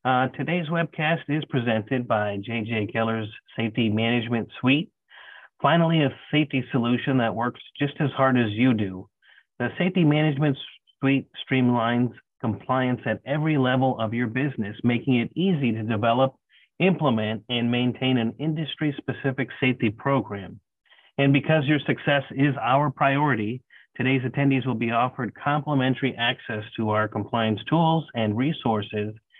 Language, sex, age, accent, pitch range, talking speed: English, male, 30-49, American, 115-140 Hz, 135 wpm